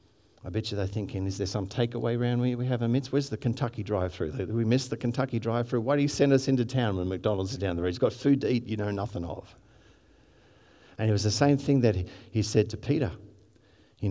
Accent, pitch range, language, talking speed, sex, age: Australian, 100-125 Hz, English, 255 wpm, male, 50-69